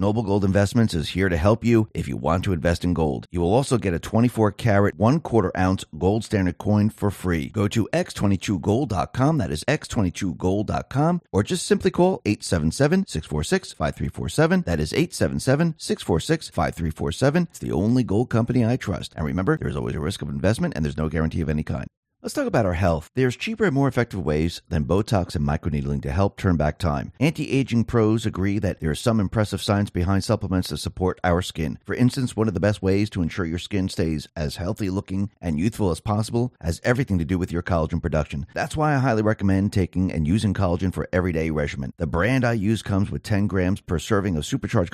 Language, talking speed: English, 200 wpm